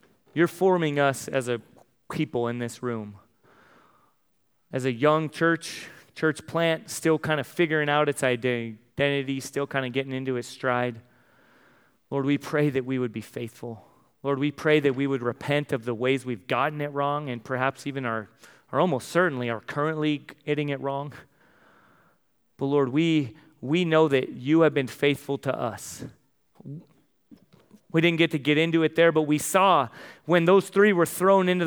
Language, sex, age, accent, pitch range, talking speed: English, male, 30-49, American, 130-165 Hz, 175 wpm